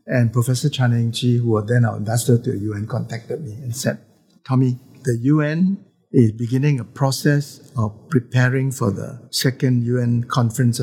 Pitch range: 115-145 Hz